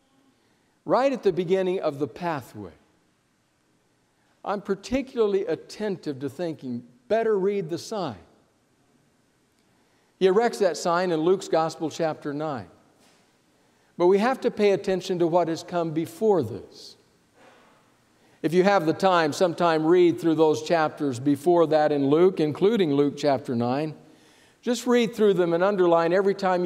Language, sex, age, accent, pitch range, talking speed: English, male, 60-79, American, 150-195 Hz, 140 wpm